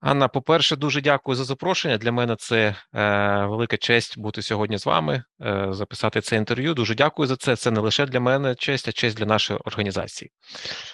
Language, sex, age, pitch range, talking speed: Ukrainian, male, 30-49, 115-150 Hz, 190 wpm